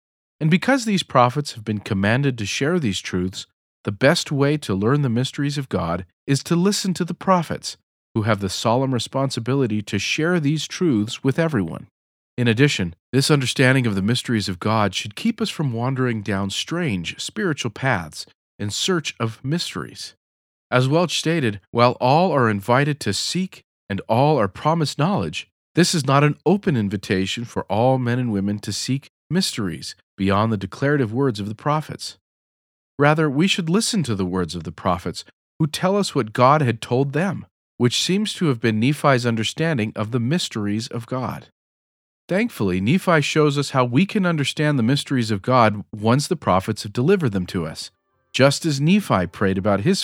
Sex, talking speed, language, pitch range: male, 180 wpm, English, 105-150 Hz